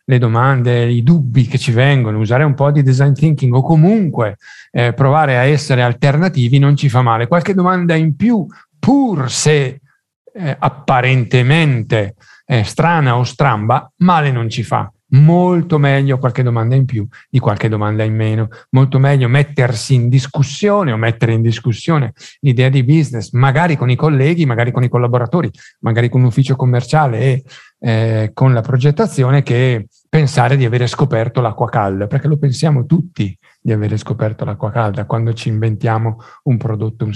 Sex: male